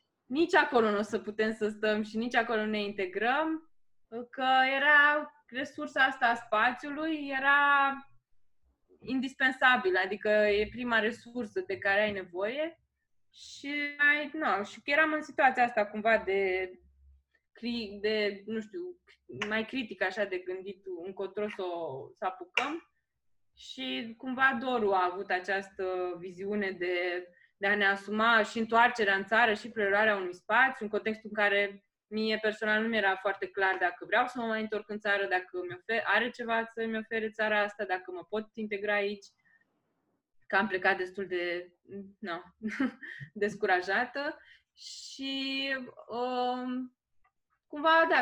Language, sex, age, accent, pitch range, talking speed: Romanian, female, 20-39, native, 200-260 Hz, 145 wpm